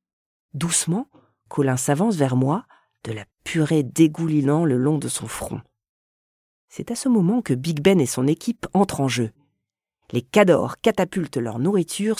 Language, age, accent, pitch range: French, 40-59, French, 130-200 Hz